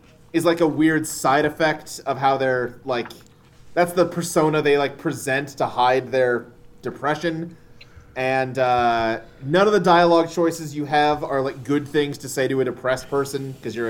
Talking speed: 175 wpm